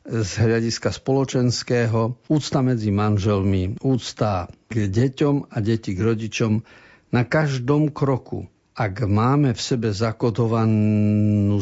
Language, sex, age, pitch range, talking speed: Slovak, male, 50-69, 105-125 Hz, 110 wpm